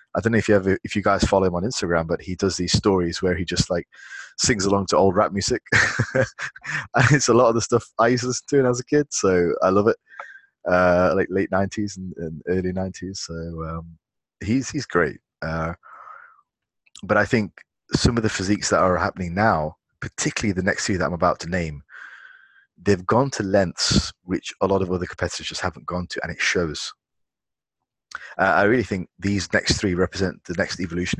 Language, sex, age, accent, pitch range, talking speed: English, male, 20-39, British, 85-110 Hz, 205 wpm